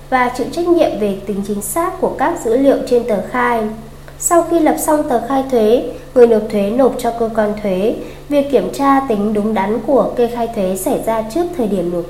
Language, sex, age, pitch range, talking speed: Vietnamese, female, 20-39, 210-275 Hz, 230 wpm